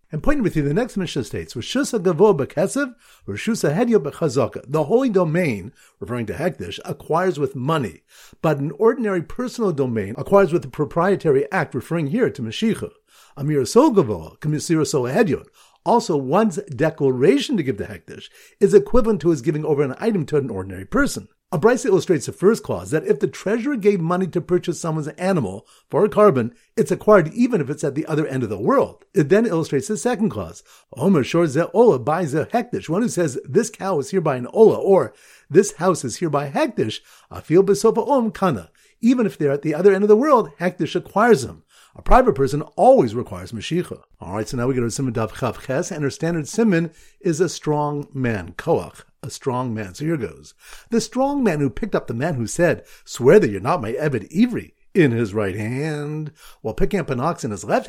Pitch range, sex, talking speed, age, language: 140-210 Hz, male, 180 wpm, 50-69, English